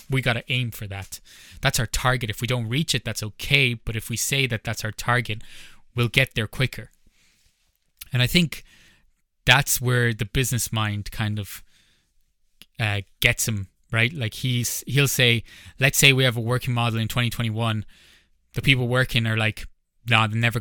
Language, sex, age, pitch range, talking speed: English, male, 20-39, 105-125 Hz, 185 wpm